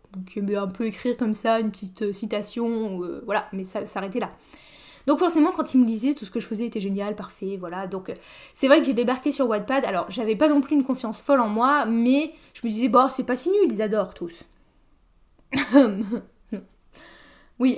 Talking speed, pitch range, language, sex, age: 215 wpm, 210-285 Hz, French, female, 10-29